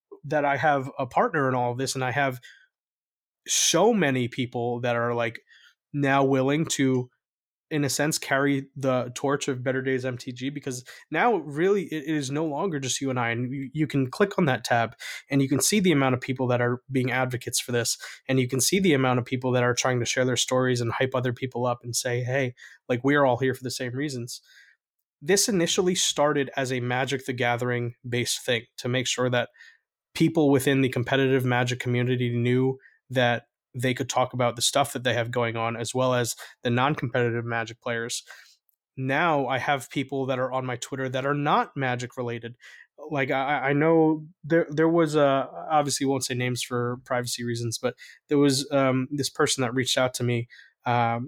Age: 20-39